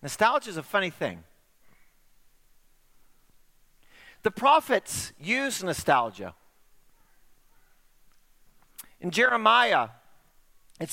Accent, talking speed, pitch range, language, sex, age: American, 65 wpm, 160-245 Hz, English, male, 40-59